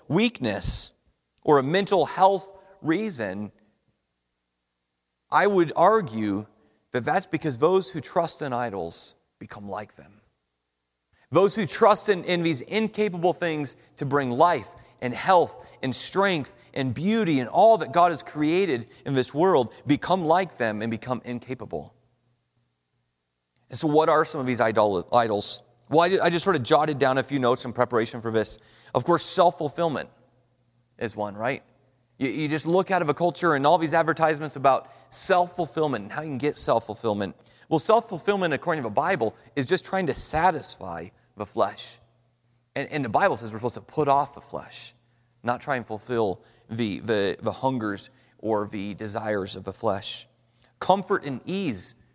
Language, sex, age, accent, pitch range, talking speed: English, male, 40-59, American, 115-170 Hz, 165 wpm